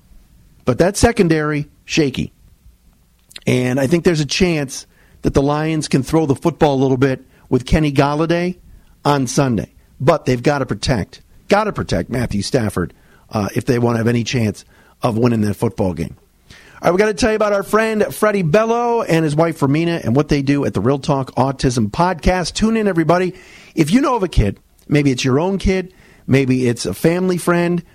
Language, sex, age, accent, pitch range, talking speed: English, male, 50-69, American, 130-180 Hz, 200 wpm